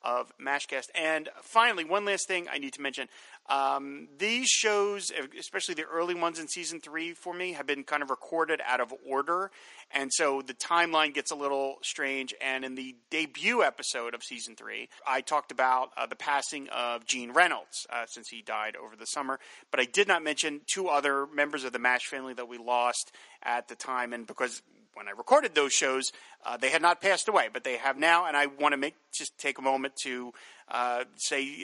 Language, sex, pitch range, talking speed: English, male, 130-155 Hz, 210 wpm